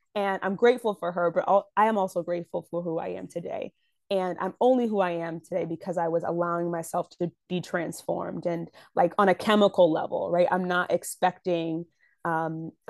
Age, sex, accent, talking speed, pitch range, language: 20-39, female, American, 200 wpm, 170-200 Hz, English